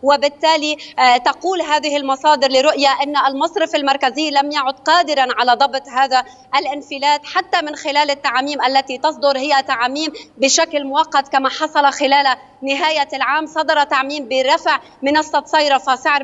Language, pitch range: Arabic, 270-305 Hz